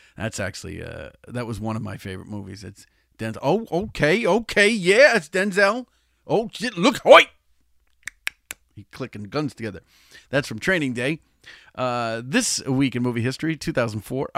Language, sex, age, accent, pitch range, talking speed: English, male, 40-59, American, 110-155 Hz, 155 wpm